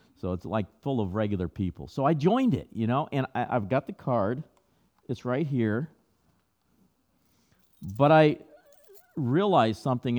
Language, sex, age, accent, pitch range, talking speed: English, male, 50-69, American, 95-130 Hz, 155 wpm